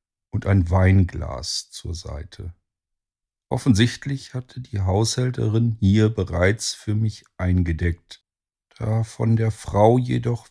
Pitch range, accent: 90-115 Hz, German